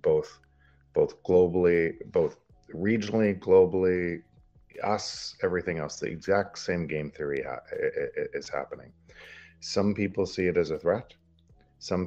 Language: Bulgarian